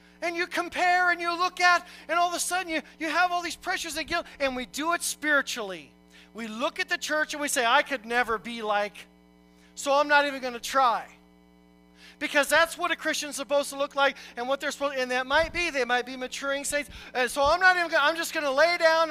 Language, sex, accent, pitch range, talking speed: English, male, American, 180-290 Hz, 250 wpm